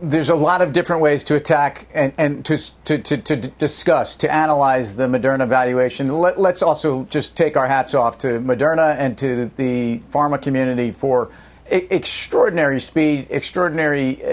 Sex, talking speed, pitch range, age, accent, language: male, 165 wpm, 130-160 Hz, 50-69, American, English